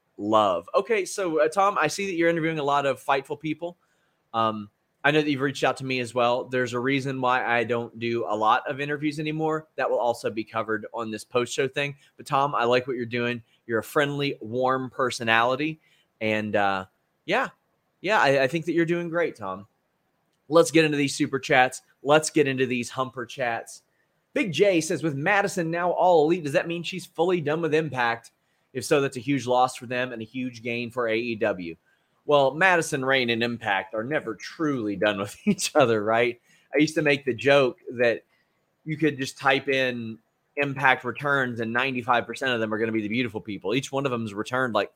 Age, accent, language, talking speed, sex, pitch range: 30-49, American, English, 210 wpm, male, 115-155 Hz